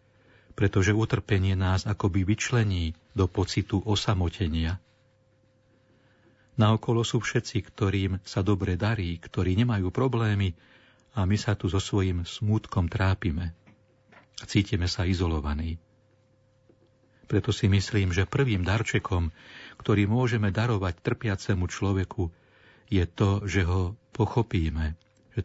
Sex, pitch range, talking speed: male, 95-110 Hz, 110 wpm